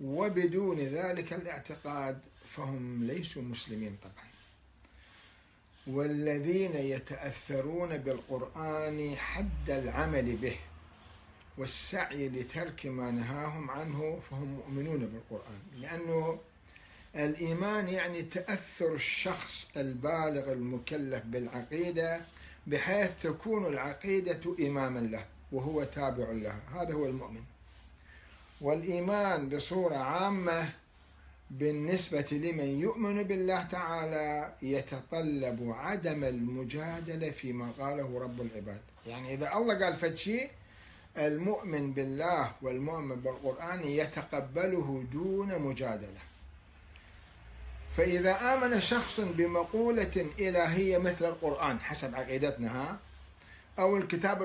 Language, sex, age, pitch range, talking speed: Arabic, male, 60-79, 125-170 Hz, 85 wpm